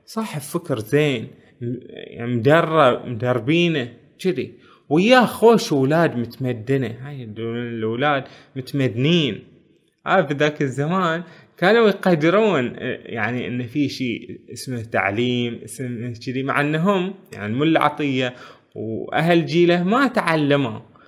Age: 20-39